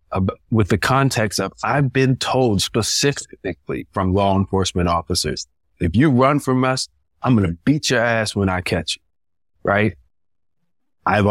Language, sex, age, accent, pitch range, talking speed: English, male, 30-49, American, 90-115 Hz, 155 wpm